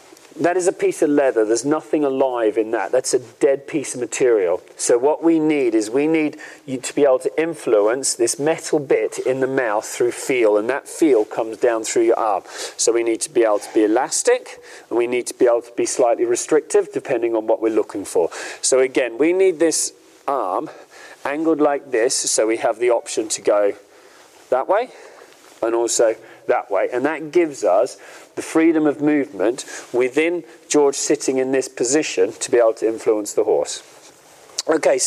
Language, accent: English, British